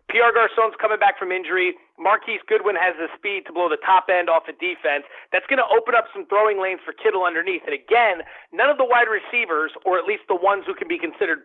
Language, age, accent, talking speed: English, 30-49, American, 240 wpm